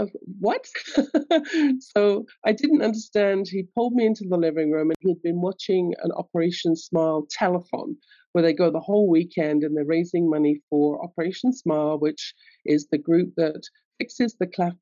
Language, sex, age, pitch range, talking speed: English, female, 50-69, 160-215 Hz, 165 wpm